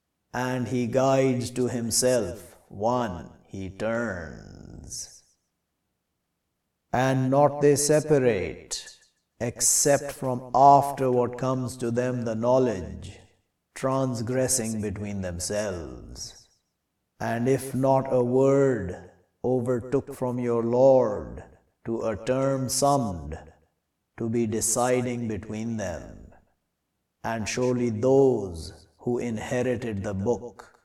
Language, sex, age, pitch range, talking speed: English, male, 50-69, 105-130 Hz, 95 wpm